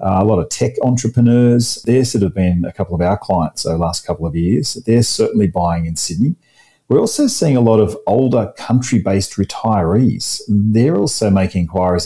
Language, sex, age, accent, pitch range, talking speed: English, male, 40-59, Australian, 90-115 Hz, 195 wpm